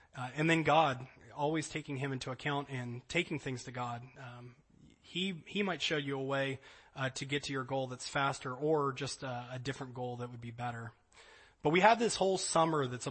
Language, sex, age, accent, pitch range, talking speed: English, male, 30-49, American, 130-155 Hz, 215 wpm